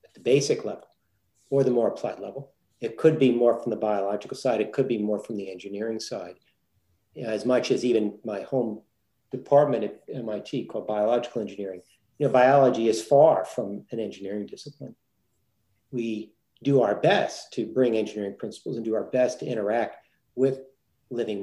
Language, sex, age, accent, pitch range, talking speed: English, male, 50-69, American, 105-135 Hz, 175 wpm